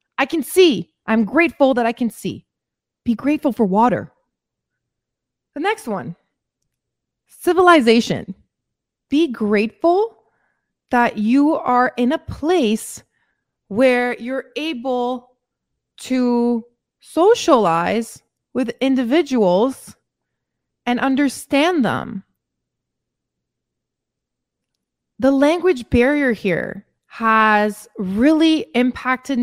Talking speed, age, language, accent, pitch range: 85 wpm, 20-39, English, American, 210-280 Hz